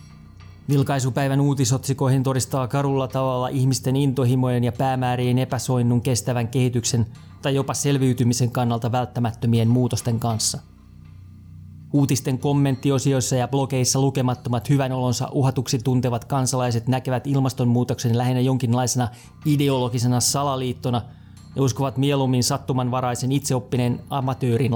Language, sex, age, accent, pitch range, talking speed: Finnish, male, 30-49, native, 120-135 Hz, 100 wpm